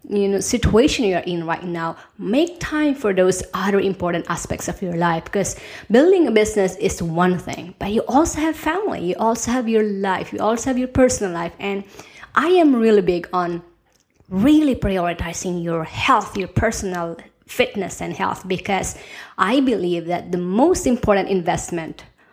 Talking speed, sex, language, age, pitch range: 165 wpm, female, English, 20-39, 175-245 Hz